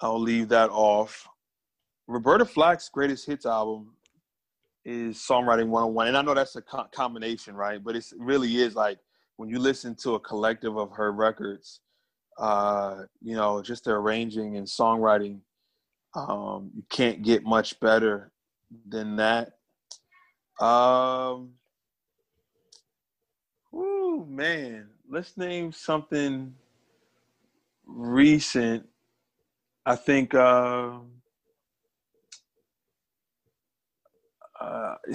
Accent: American